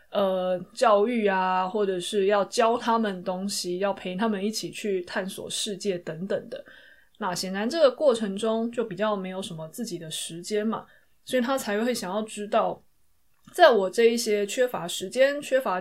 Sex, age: female, 20-39